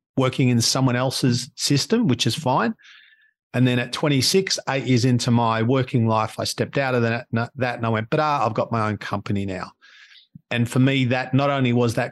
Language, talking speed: English, 210 wpm